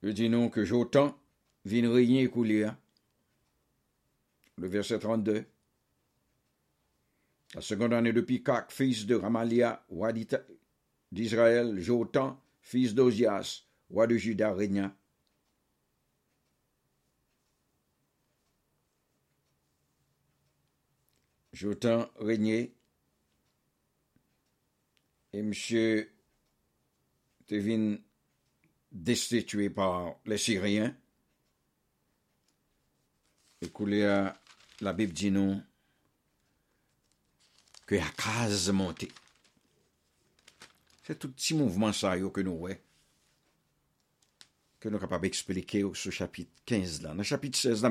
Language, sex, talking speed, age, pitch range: English, male, 85 wpm, 60-79, 95-115 Hz